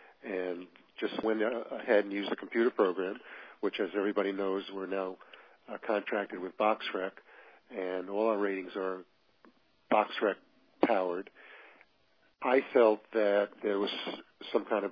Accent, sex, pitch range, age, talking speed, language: American, male, 95-110 Hz, 50-69, 135 wpm, English